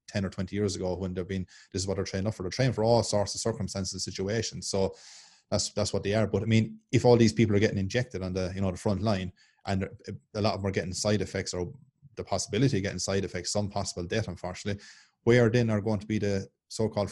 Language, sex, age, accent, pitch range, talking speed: English, male, 20-39, Irish, 95-110 Hz, 265 wpm